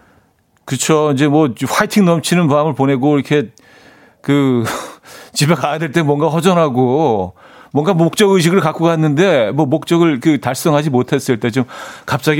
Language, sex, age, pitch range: Korean, male, 40-59, 120-160 Hz